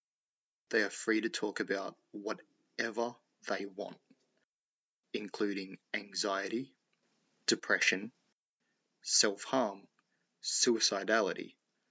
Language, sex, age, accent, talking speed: English, male, 20-39, Australian, 70 wpm